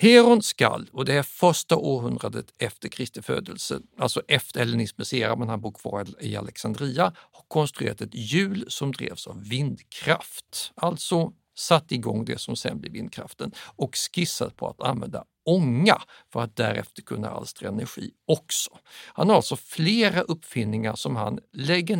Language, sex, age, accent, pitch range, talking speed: Swedish, male, 60-79, native, 115-160 Hz, 150 wpm